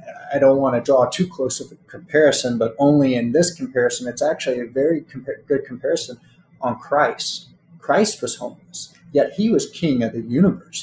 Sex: male